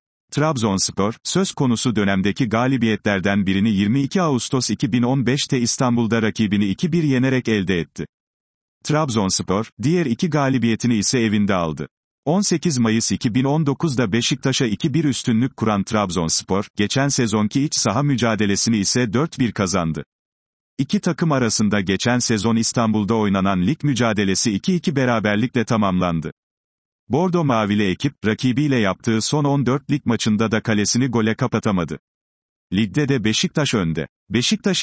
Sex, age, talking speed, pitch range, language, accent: male, 40-59, 115 wpm, 105-135 Hz, Turkish, native